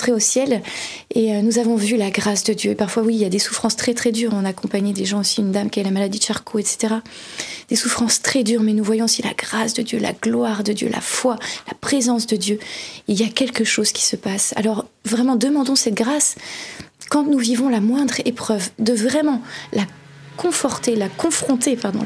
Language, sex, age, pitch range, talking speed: French, female, 20-39, 215-250 Hz, 230 wpm